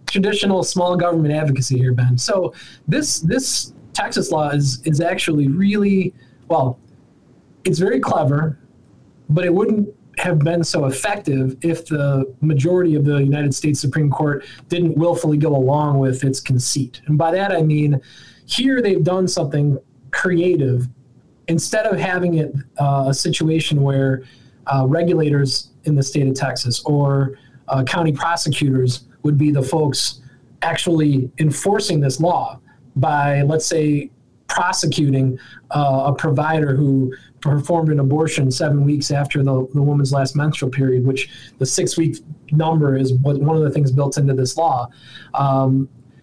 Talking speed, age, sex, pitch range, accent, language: 150 wpm, 20-39, male, 135-165 Hz, American, English